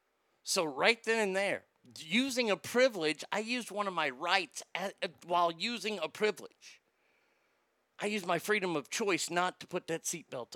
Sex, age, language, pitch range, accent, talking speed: male, 50-69, English, 155-215 Hz, American, 170 wpm